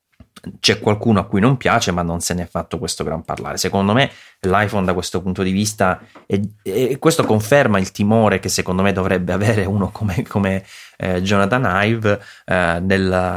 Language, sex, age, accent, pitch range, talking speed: Italian, male, 30-49, native, 90-115 Hz, 185 wpm